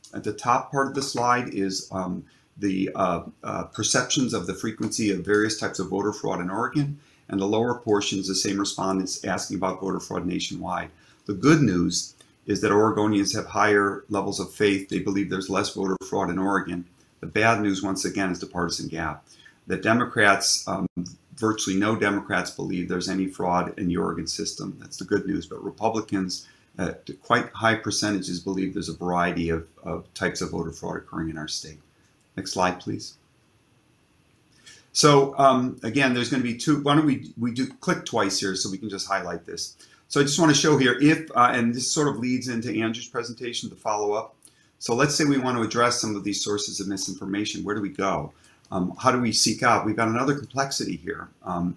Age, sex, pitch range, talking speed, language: 40-59, male, 95-120 Hz, 205 wpm, English